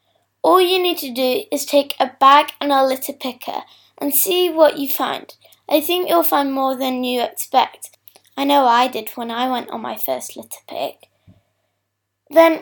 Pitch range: 250-310 Hz